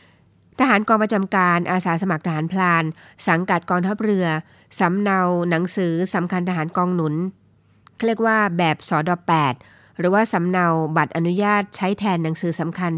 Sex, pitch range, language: female, 160-200 Hz, Thai